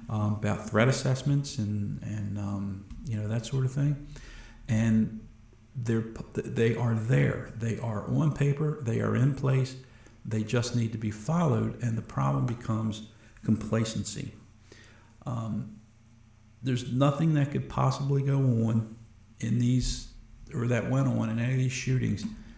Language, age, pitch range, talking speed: English, 50-69, 110-125 Hz, 145 wpm